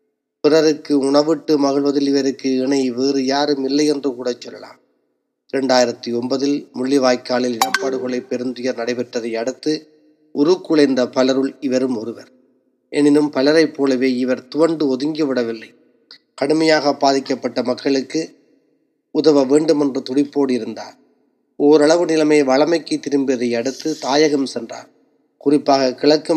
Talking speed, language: 100 wpm, Tamil